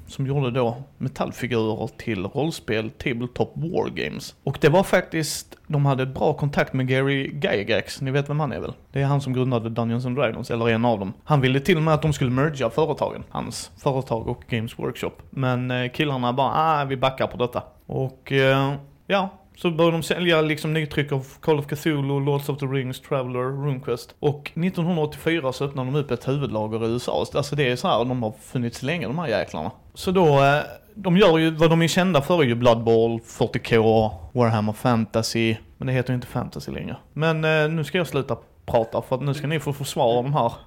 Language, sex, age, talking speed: Swedish, male, 30-49, 210 wpm